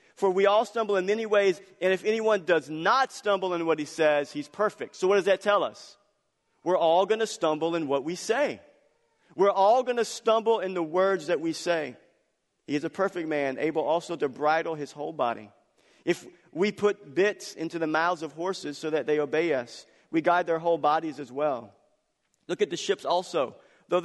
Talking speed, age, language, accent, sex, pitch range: 210 wpm, 50-69, English, American, male, 140-185 Hz